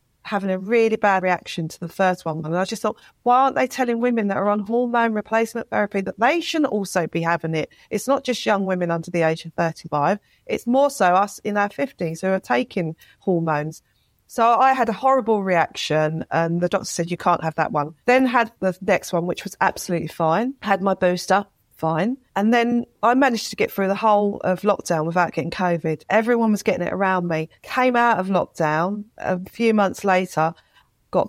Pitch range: 175-235 Hz